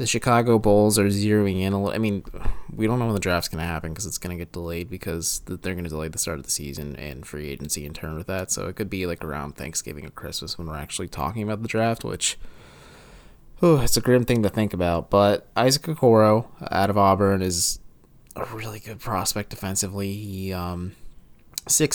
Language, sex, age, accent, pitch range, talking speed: English, male, 20-39, American, 90-110 Hz, 215 wpm